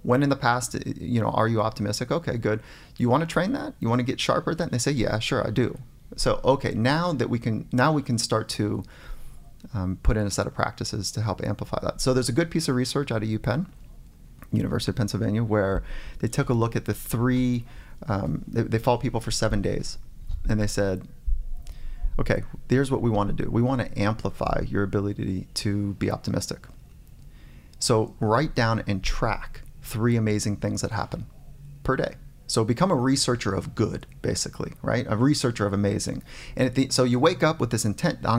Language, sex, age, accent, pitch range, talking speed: English, male, 30-49, American, 105-130 Hz, 205 wpm